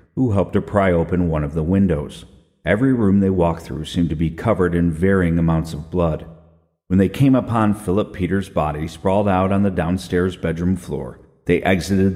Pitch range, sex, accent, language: 80-100 Hz, male, American, English